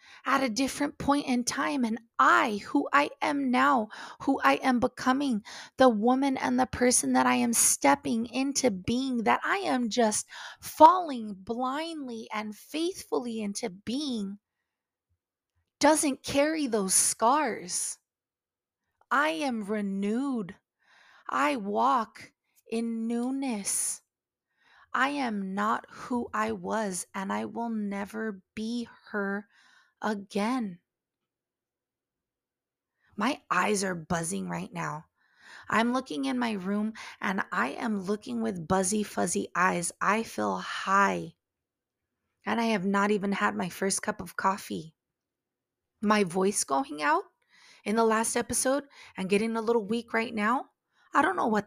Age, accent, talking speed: 20-39, American, 130 wpm